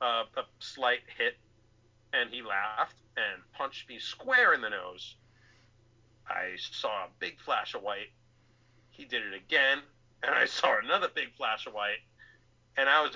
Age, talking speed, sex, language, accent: 40-59, 165 wpm, male, English, American